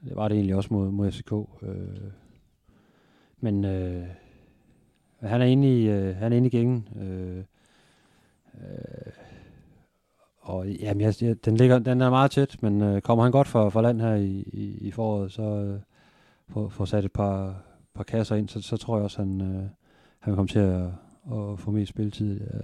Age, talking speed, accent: 40-59, 180 wpm, native